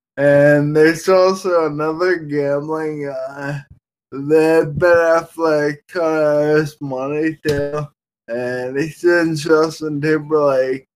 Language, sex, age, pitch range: English, male, 20-39, 140-160 Hz